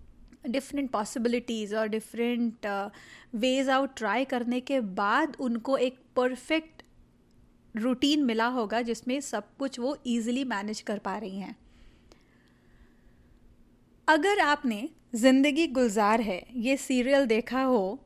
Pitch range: 225-285 Hz